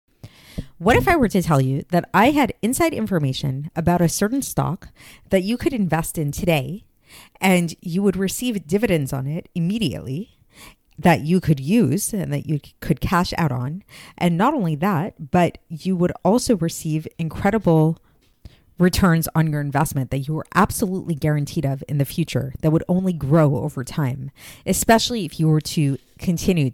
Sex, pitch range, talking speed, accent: female, 145-190 Hz, 170 wpm, American